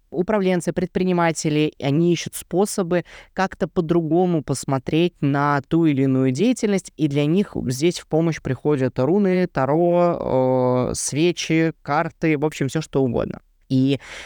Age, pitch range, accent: 20-39, 135-170 Hz, native